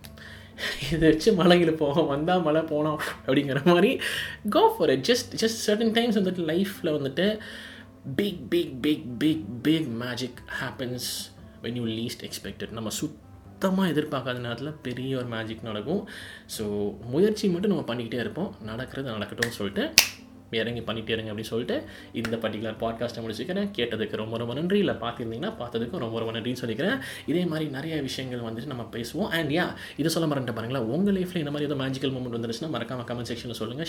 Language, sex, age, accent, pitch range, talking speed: Tamil, male, 20-39, native, 115-165 Hz, 160 wpm